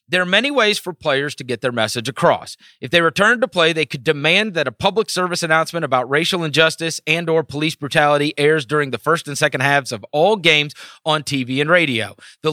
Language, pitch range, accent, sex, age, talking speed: English, 135-175 Hz, American, male, 30-49, 220 wpm